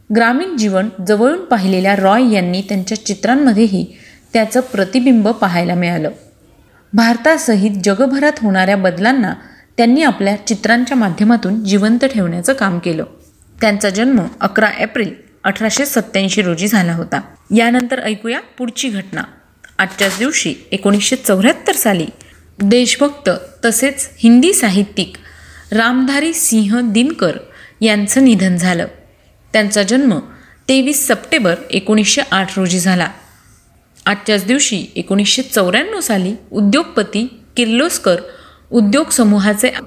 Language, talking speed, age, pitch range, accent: Marathi, 100 wpm, 30-49, 195-255 Hz, native